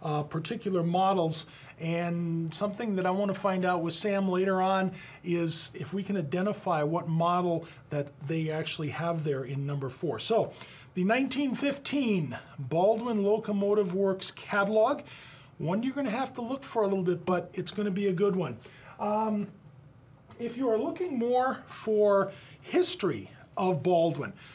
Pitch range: 160-205 Hz